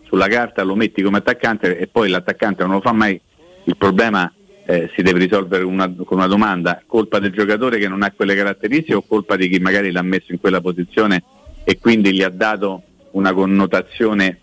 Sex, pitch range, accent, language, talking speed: male, 90-110 Hz, native, Italian, 200 wpm